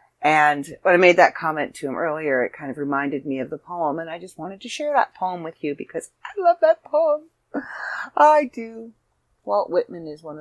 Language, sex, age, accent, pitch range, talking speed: English, female, 40-59, American, 135-210 Hz, 220 wpm